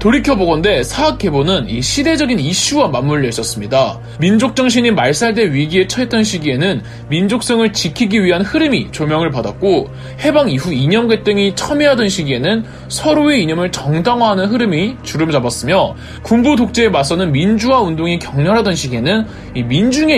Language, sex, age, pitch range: Korean, male, 20-39, 145-235 Hz